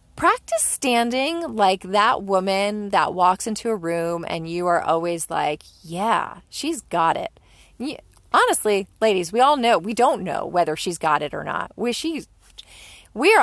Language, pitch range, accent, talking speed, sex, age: English, 165-225 Hz, American, 165 wpm, female, 30-49